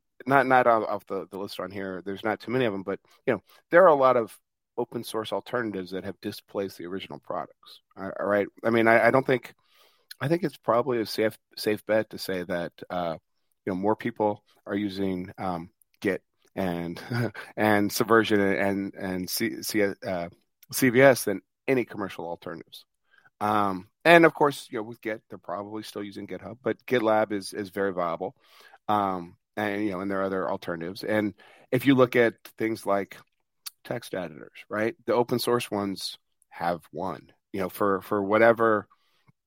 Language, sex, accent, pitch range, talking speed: English, male, American, 95-115 Hz, 185 wpm